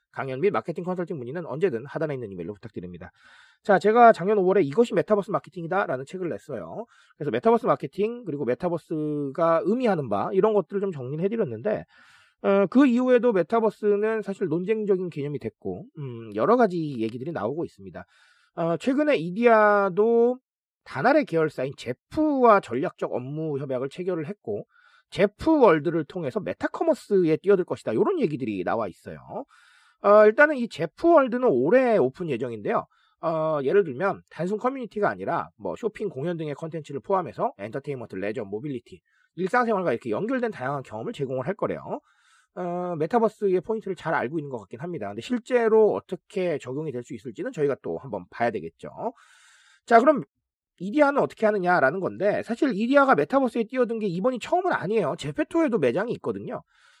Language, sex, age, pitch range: Korean, male, 30-49, 155-230 Hz